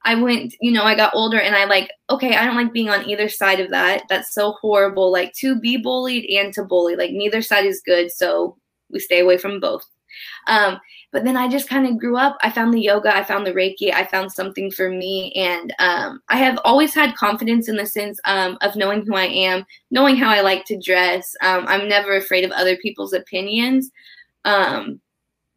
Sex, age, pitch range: female, 10-29, 185-230 Hz